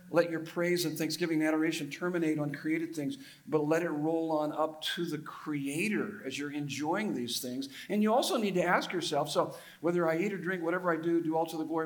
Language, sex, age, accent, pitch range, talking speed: English, male, 50-69, American, 155-205 Hz, 230 wpm